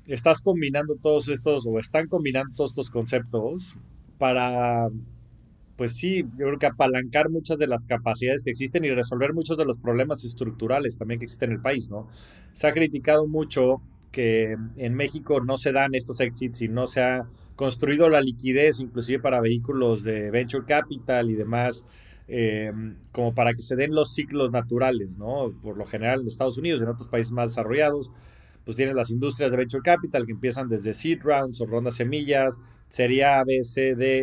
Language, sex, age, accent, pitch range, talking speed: Spanish, male, 30-49, Mexican, 115-140 Hz, 185 wpm